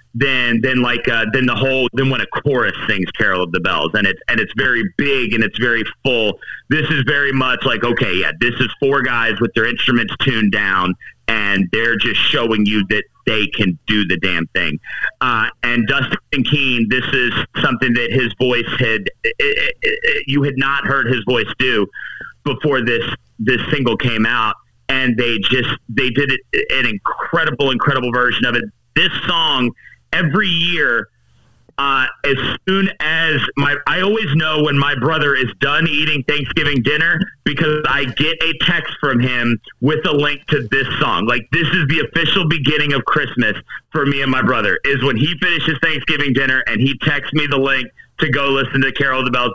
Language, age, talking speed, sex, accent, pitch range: English, 40-59, 195 wpm, male, American, 120-150 Hz